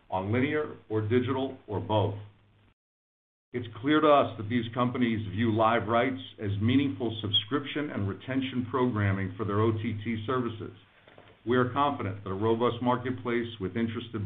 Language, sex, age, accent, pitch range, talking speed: English, male, 50-69, American, 100-125 Hz, 145 wpm